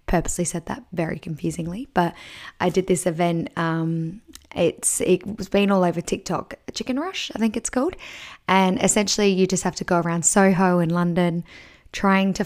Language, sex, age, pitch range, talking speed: English, female, 10-29, 175-230 Hz, 180 wpm